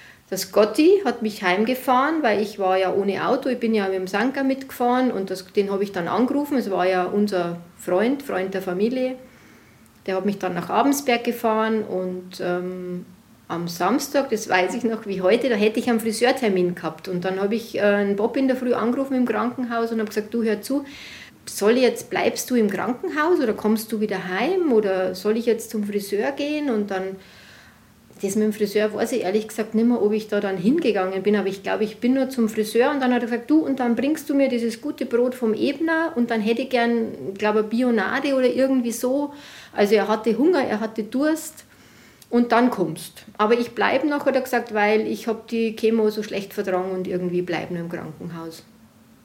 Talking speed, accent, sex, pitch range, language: 220 wpm, Austrian, female, 195-250 Hz, German